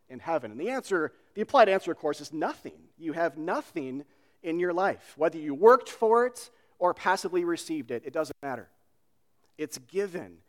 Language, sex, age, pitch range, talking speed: English, male, 40-59, 130-180 Hz, 185 wpm